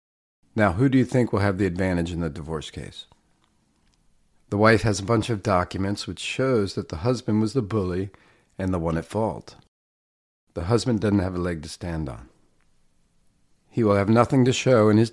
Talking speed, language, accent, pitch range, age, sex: 200 wpm, English, American, 85-110 Hz, 40-59, male